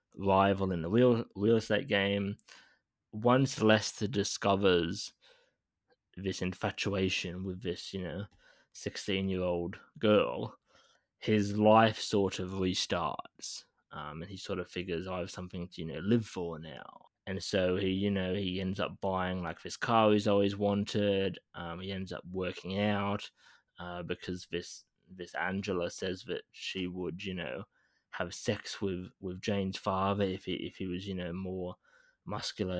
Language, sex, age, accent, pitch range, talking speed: English, male, 20-39, Australian, 95-105 Hz, 160 wpm